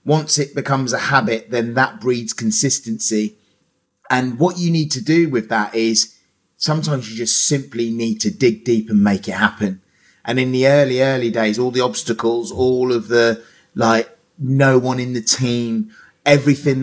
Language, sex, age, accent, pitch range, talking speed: English, male, 30-49, British, 115-135 Hz, 175 wpm